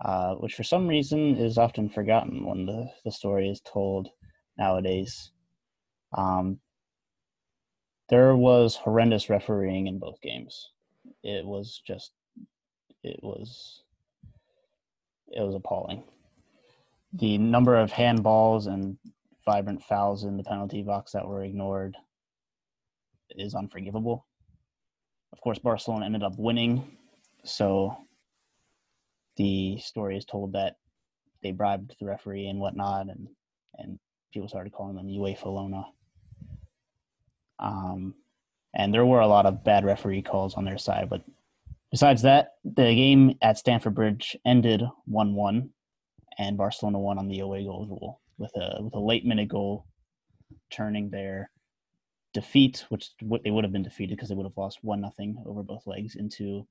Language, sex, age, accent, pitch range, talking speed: English, male, 20-39, American, 95-110 Hz, 140 wpm